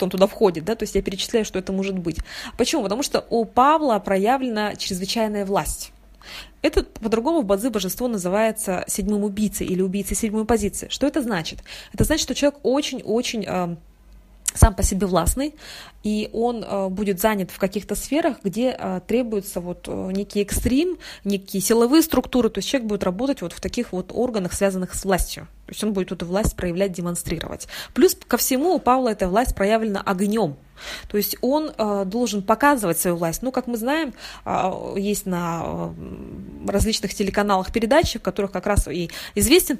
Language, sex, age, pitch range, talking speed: Russian, female, 20-39, 185-245 Hz, 165 wpm